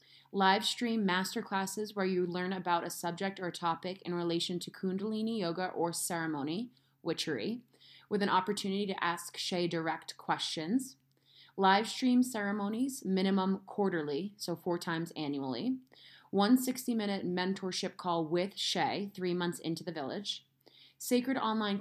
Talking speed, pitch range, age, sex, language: 130 wpm, 170-200 Hz, 20-39, female, English